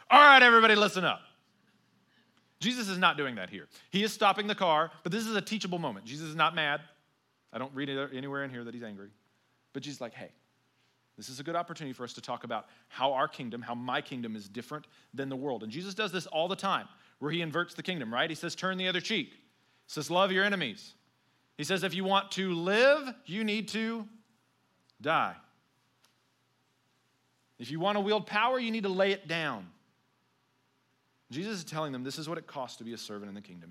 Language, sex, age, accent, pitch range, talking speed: English, male, 40-59, American, 130-195 Hz, 220 wpm